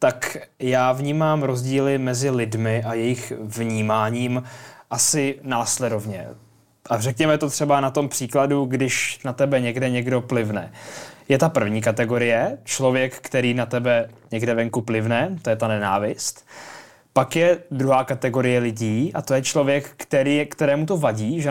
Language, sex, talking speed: Czech, male, 145 wpm